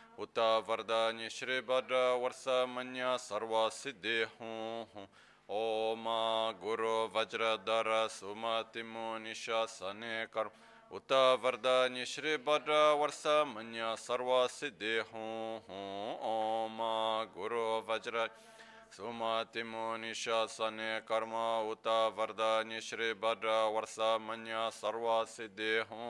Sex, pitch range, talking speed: male, 110-125 Hz, 65 wpm